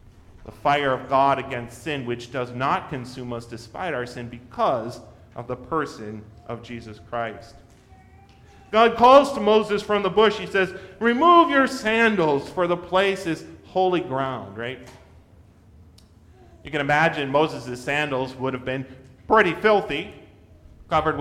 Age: 40-59